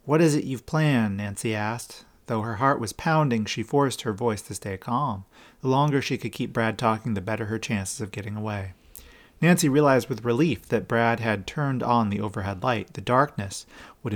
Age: 40-59